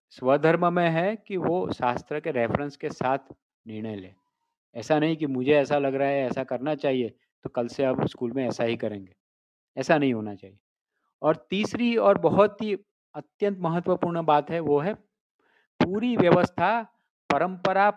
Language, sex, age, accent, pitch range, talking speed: Hindi, male, 50-69, native, 140-195 Hz, 165 wpm